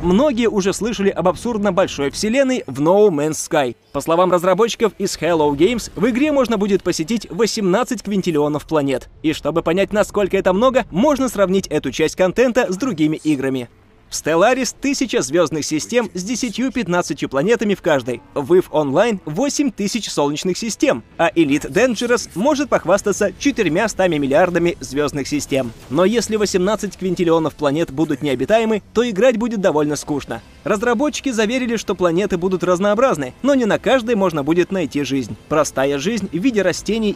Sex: male